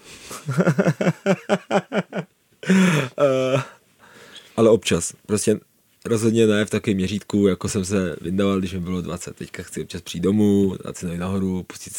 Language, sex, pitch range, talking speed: Czech, male, 90-105 Hz, 130 wpm